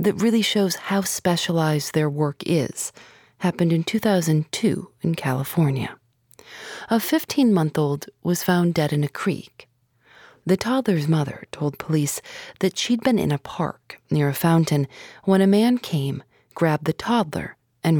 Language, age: English, 40-59